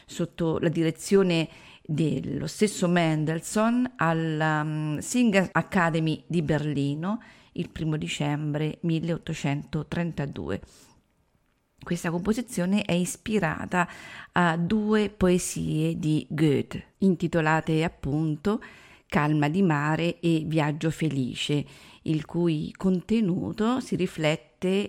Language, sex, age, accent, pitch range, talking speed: Italian, female, 40-59, native, 155-190 Hz, 90 wpm